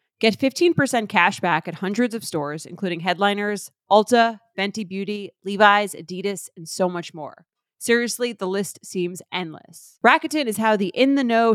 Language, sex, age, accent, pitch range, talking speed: English, female, 20-39, American, 175-215 Hz, 155 wpm